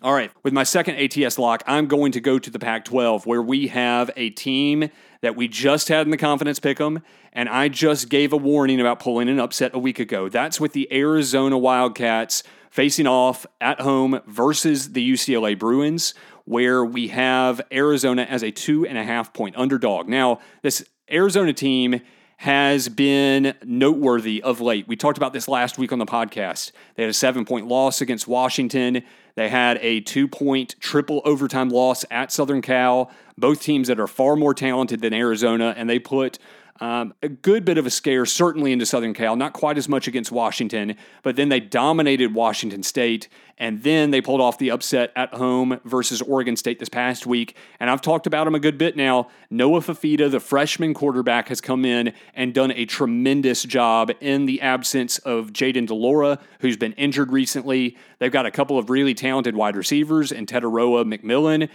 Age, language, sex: 30-49, English, male